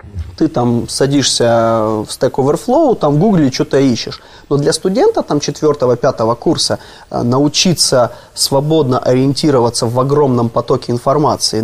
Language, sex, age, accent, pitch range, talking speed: Ukrainian, male, 20-39, native, 135-185 Hz, 130 wpm